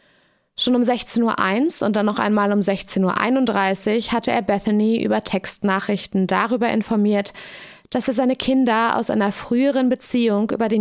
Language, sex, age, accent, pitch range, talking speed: German, female, 20-39, German, 195-235 Hz, 155 wpm